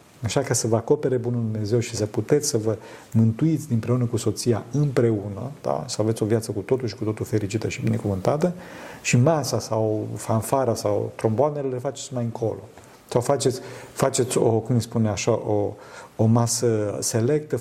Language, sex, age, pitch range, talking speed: Romanian, male, 50-69, 110-130 Hz, 175 wpm